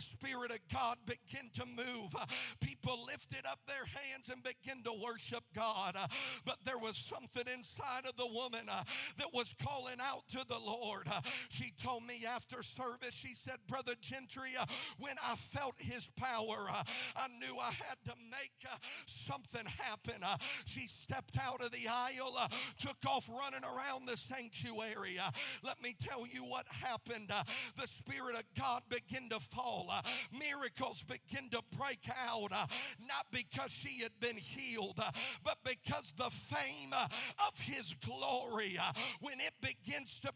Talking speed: 155 wpm